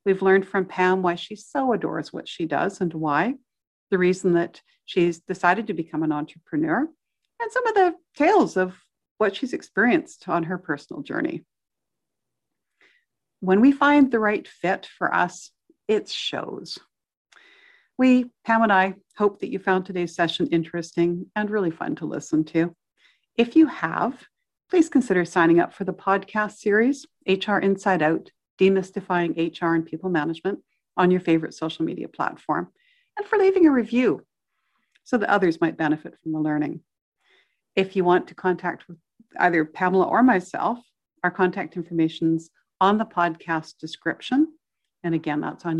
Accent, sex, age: American, female, 60-79